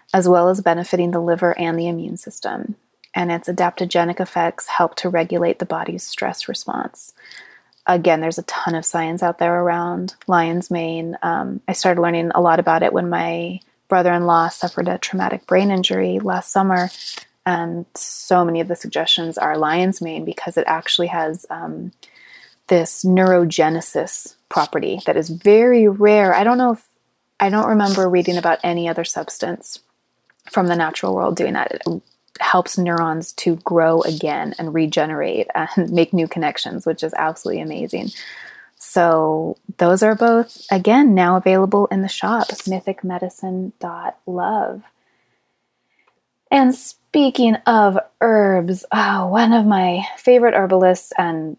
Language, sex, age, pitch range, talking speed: English, female, 30-49, 170-195 Hz, 145 wpm